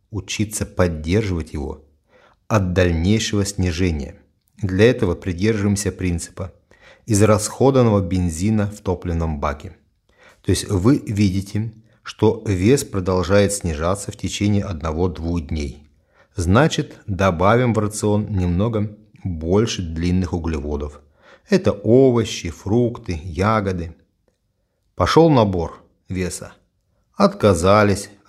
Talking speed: 90 wpm